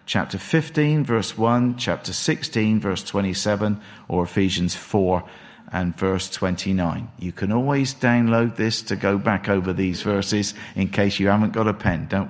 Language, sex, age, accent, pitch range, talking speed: English, male, 50-69, British, 100-135 Hz, 160 wpm